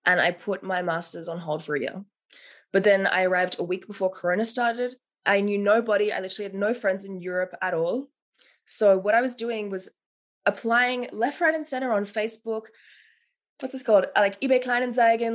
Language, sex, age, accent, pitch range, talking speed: English, female, 20-39, Australian, 200-245 Hz, 195 wpm